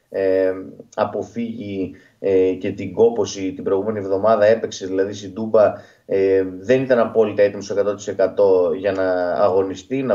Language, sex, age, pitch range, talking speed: Greek, male, 20-39, 100-155 Hz, 135 wpm